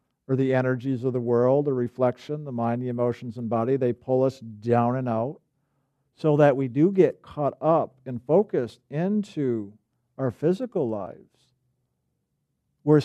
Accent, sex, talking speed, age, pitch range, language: American, male, 160 wpm, 50-69, 120-150 Hz, English